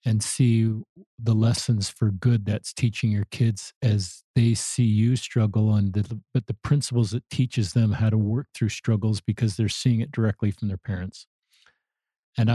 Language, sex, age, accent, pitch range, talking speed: English, male, 50-69, American, 110-125 Hz, 170 wpm